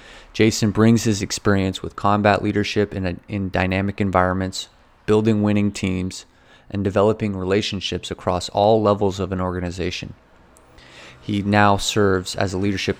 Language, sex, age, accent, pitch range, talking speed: English, male, 20-39, American, 95-110 Hz, 135 wpm